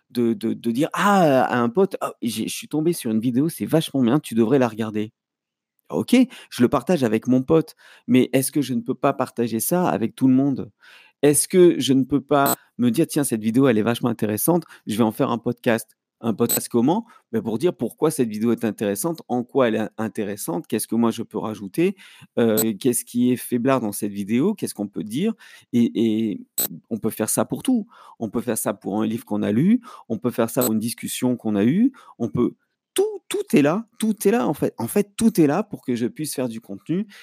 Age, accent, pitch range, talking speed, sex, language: 40-59, French, 110-160 Hz, 240 wpm, male, French